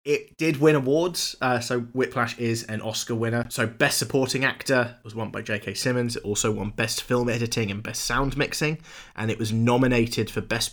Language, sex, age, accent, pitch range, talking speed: English, male, 20-39, British, 105-125 Hz, 200 wpm